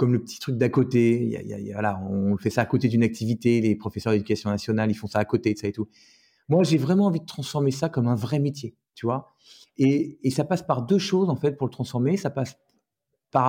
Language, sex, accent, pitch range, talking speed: French, male, French, 115-150 Hz, 270 wpm